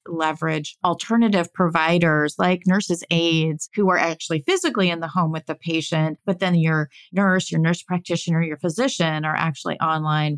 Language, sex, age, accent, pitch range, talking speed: English, female, 30-49, American, 155-185 Hz, 160 wpm